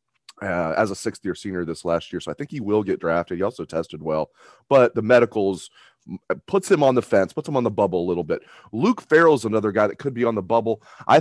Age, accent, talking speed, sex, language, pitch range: 30-49, American, 250 wpm, male, English, 100-120 Hz